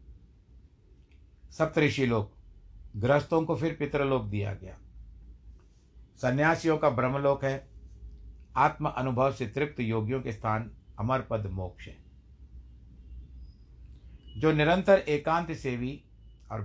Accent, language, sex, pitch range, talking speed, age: native, Hindi, male, 95-125 Hz, 100 wpm, 60-79